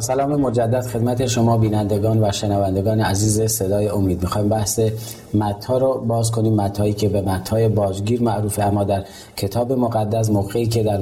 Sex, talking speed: male, 160 wpm